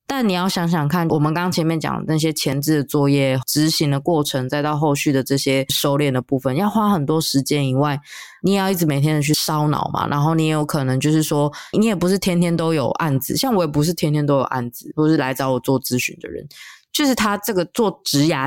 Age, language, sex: 20-39, Chinese, female